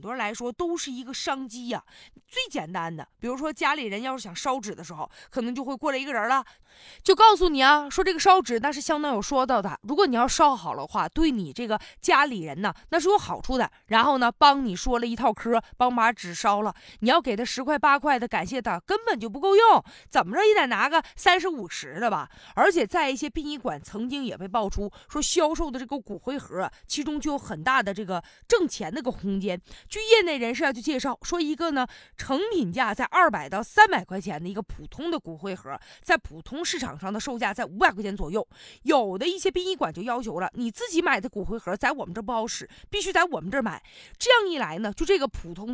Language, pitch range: Chinese, 220-320 Hz